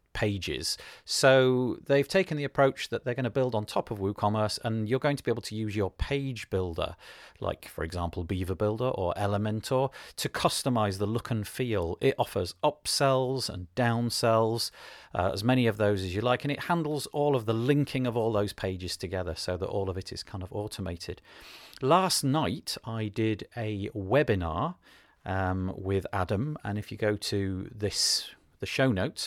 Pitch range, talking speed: 100-135 Hz, 185 wpm